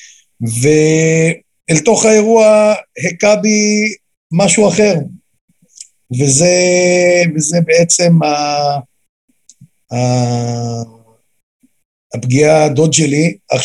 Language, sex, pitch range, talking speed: Hebrew, male, 120-160 Hz, 70 wpm